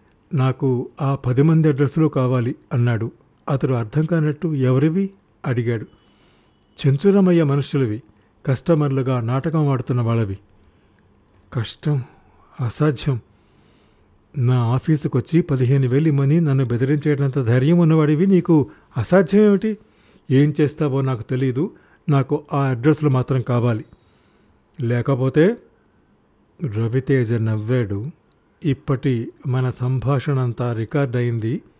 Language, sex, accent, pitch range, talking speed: Telugu, male, native, 120-150 Hz, 95 wpm